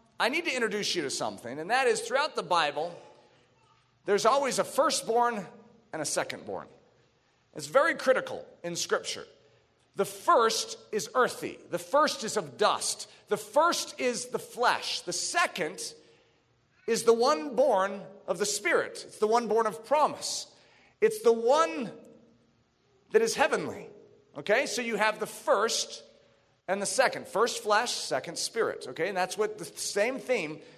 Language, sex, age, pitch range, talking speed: English, male, 40-59, 185-295 Hz, 155 wpm